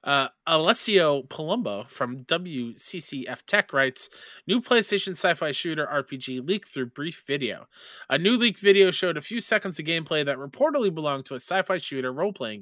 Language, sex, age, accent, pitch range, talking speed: English, male, 20-39, American, 135-195 Hz, 160 wpm